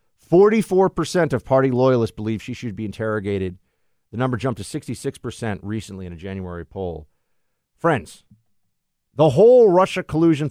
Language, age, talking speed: English, 50-69, 135 wpm